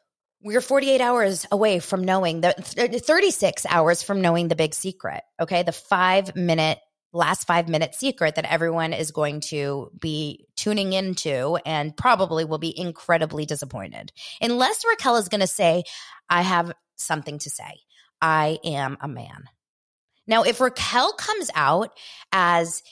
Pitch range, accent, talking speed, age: 155-220 Hz, American, 150 wpm, 20-39